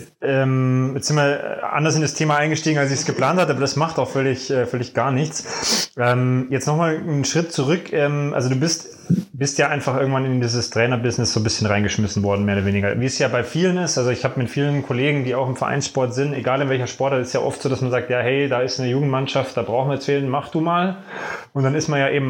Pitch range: 125-150 Hz